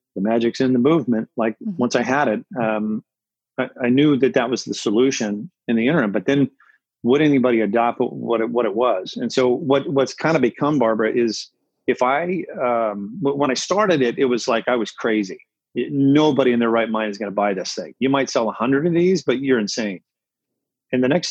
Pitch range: 115-135 Hz